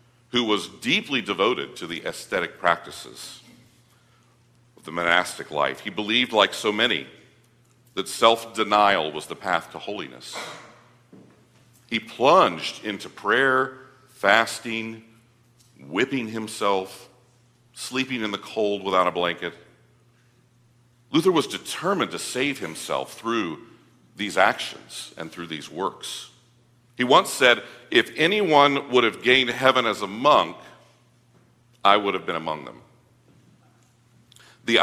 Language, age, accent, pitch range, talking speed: English, 50-69, American, 110-125 Hz, 120 wpm